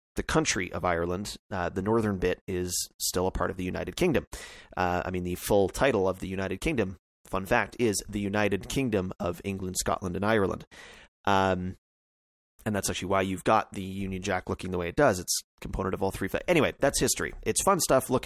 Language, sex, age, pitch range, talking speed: English, male, 30-49, 95-110 Hz, 210 wpm